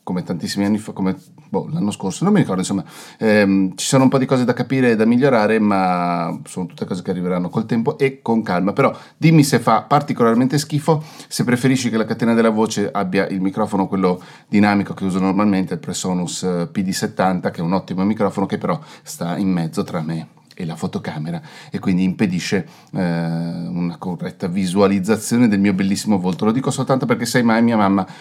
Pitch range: 95-145 Hz